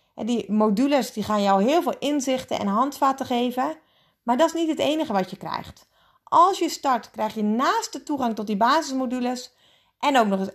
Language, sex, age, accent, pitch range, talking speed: Dutch, female, 30-49, Dutch, 220-290 Hz, 195 wpm